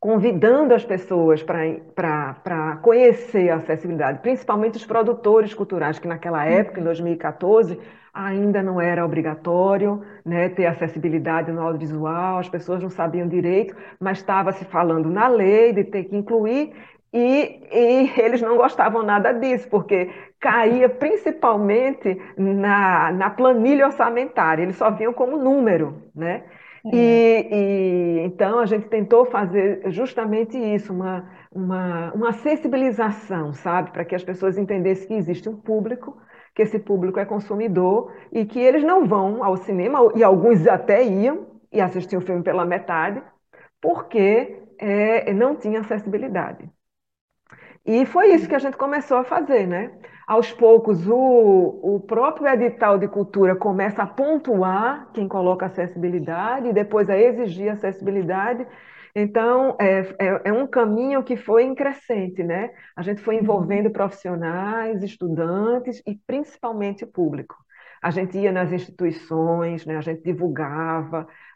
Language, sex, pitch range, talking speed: Portuguese, female, 180-235 Hz, 140 wpm